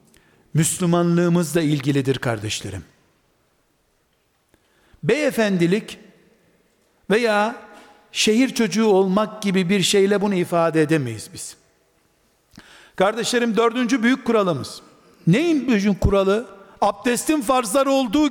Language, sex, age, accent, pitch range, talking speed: Turkish, male, 60-79, native, 150-235 Hz, 80 wpm